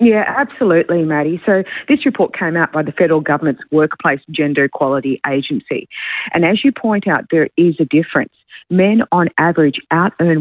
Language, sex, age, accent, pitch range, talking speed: English, female, 40-59, Australian, 145-185 Hz, 165 wpm